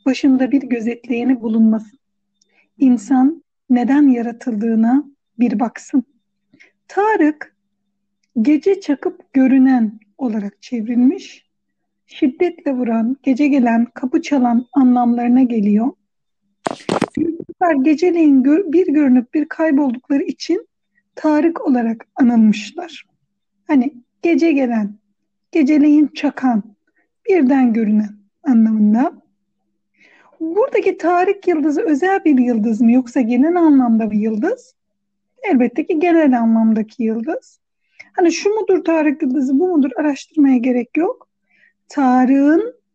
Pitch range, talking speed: 235-315 Hz, 95 wpm